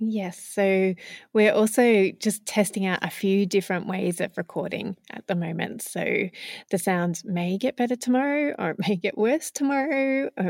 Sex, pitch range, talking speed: female, 180-235 Hz, 170 wpm